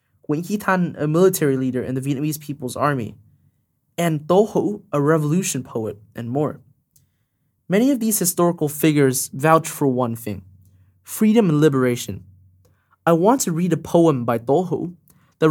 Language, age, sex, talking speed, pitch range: English, 20-39, male, 150 wpm, 125-170 Hz